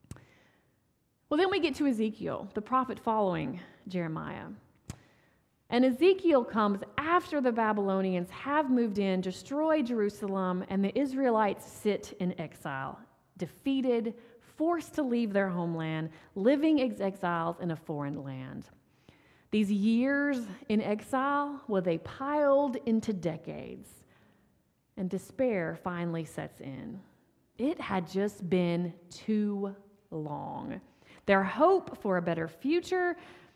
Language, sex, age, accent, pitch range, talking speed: English, female, 30-49, American, 185-260 Hz, 115 wpm